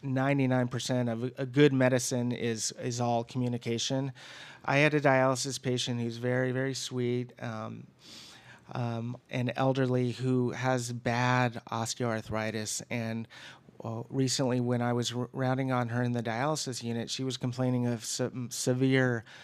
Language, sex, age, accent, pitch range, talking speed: English, male, 30-49, American, 120-135 Hz, 145 wpm